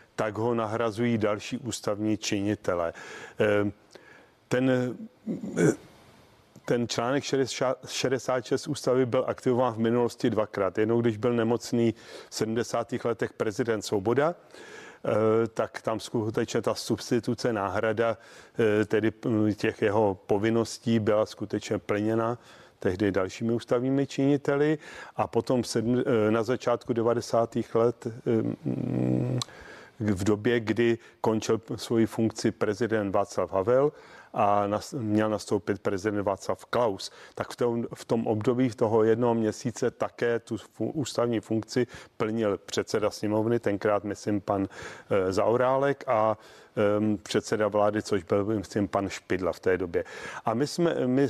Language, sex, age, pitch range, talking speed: Czech, male, 40-59, 105-125 Hz, 120 wpm